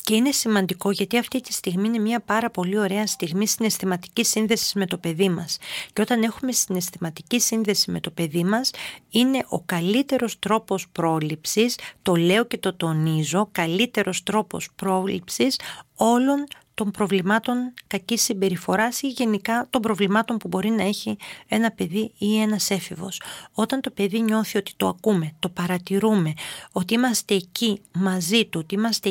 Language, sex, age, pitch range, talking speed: Greek, female, 40-59, 185-230 Hz, 155 wpm